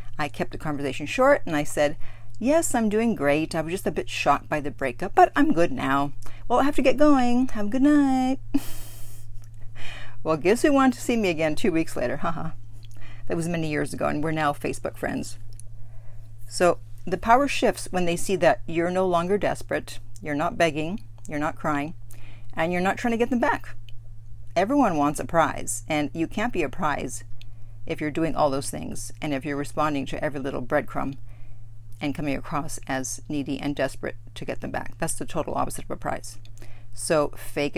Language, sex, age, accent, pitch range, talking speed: English, female, 40-59, American, 110-175 Hz, 200 wpm